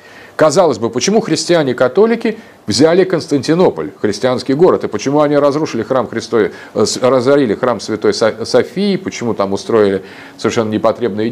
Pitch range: 120-190 Hz